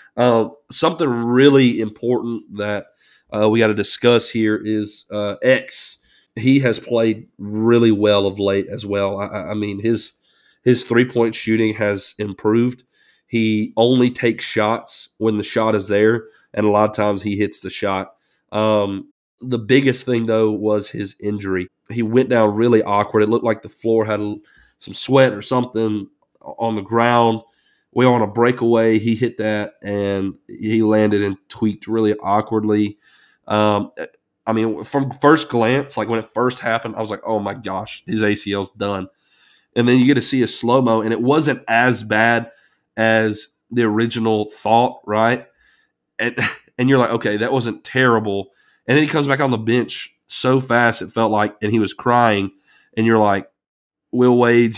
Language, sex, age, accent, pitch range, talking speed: English, male, 30-49, American, 105-120 Hz, 175 wpm